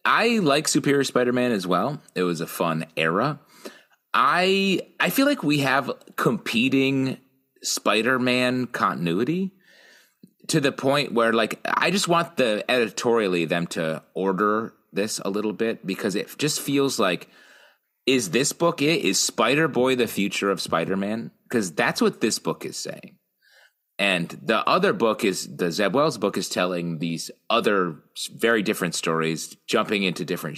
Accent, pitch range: American, 95-140 Hz